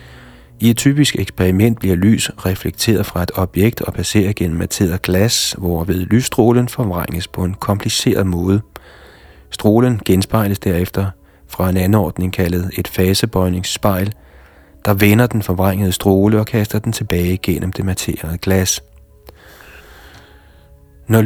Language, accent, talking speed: Danish, native, 130 wpm